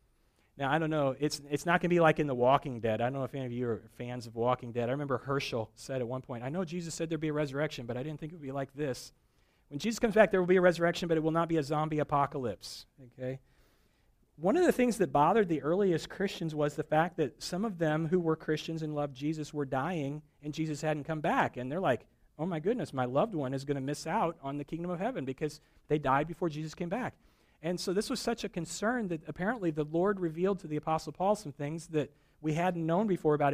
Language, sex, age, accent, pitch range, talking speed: English, male, 40-59, American, 135-170 Hz, 270 wpm